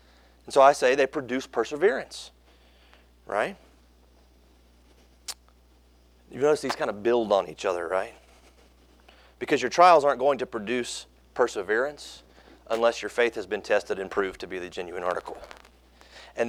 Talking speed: 145 wpm